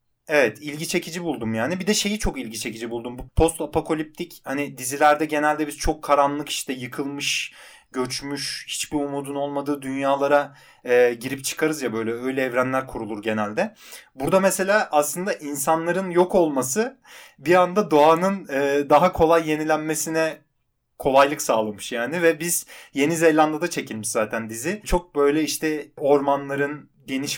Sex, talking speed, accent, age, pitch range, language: male, 140 wpm, native, 30-49, 125-155 Hz, Turkish